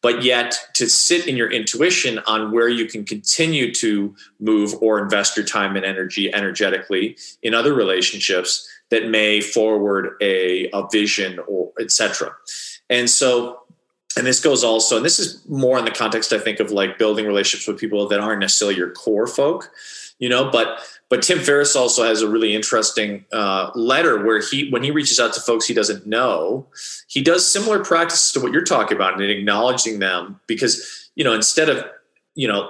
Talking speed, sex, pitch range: 190 wpm, male, 105-130 Hz